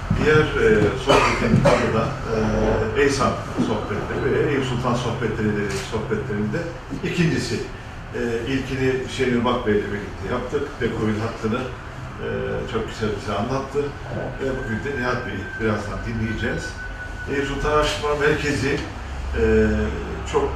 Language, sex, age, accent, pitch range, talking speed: Turkish, male, 50-69, native, 95-125 Hz, 125 wpm